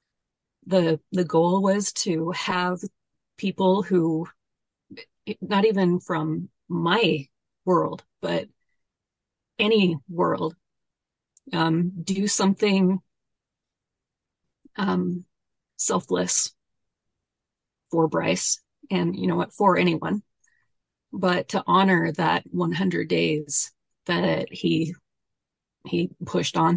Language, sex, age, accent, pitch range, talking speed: English, female, 30-49, American, 160-185 Hz, 90 wpm